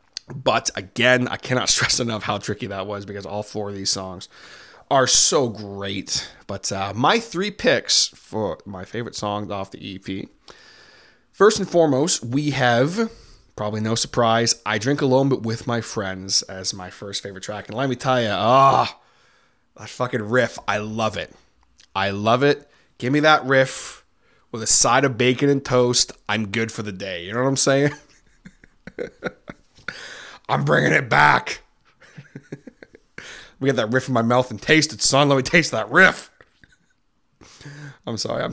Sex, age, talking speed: male, 20-39, 170 wpm